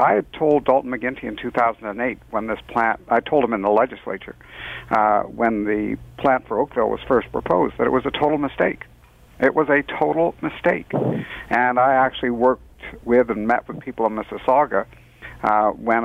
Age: 60-79